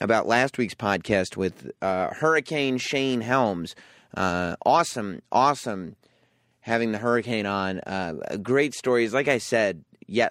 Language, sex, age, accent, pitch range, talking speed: English, male, 30-49, American, 100-140 Hz, 135 wpm